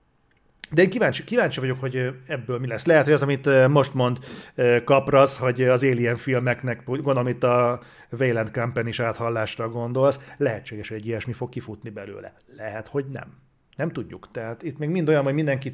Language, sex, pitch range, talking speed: Hungarian, male, 115-135 Hz, 180 wpm